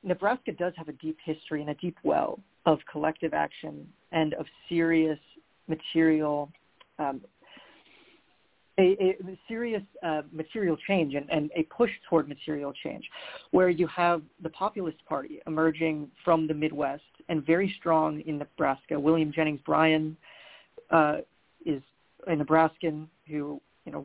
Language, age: English, 40-59